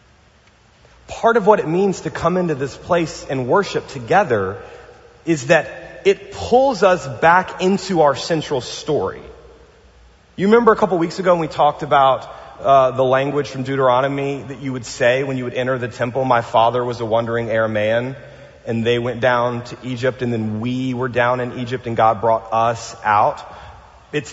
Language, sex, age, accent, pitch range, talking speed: English, male, 30-49, American, 120-170 Hz, 185 wpm